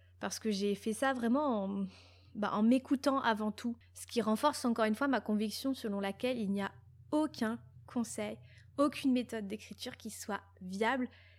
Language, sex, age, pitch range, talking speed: French, female, 20-39, 195-240 Hz, 175 wpm